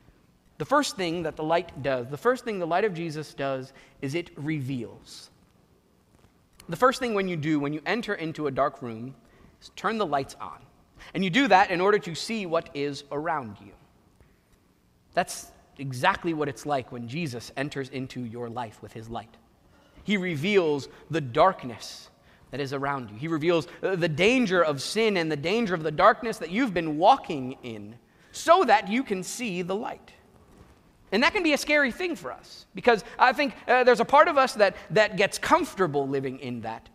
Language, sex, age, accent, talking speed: English, male, 30-49, American, 195 wpm